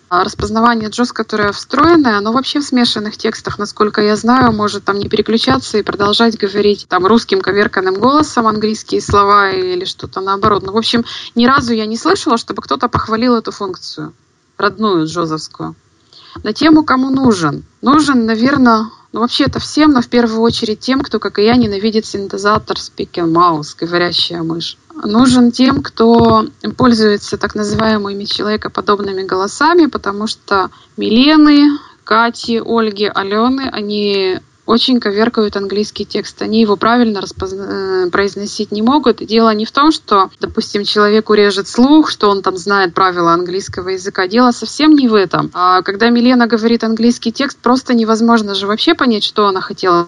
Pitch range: 200-240 Hz